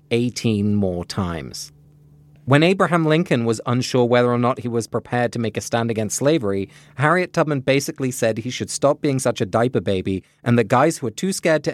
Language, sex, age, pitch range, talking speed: English, male, 30-49, 105-145 Hz, 205 wpm